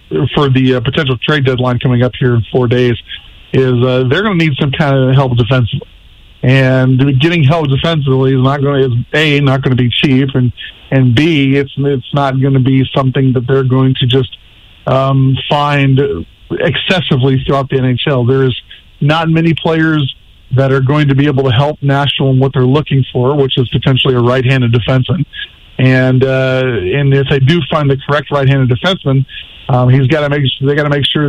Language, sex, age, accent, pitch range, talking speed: English, male, 50-69, American, 130-150 Hz, 200 wpm